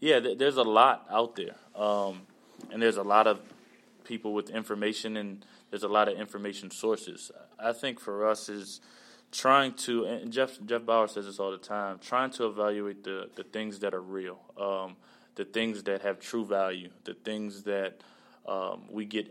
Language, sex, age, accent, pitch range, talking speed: English, male, 20-39, American, 100-110 Hz, 185 wpm